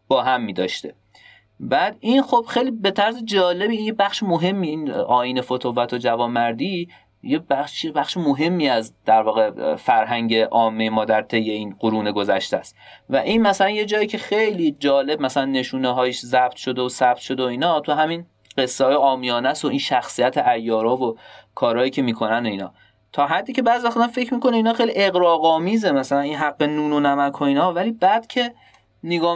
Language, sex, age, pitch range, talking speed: English, male, 30-49, 125-185 Hz, 180 wpm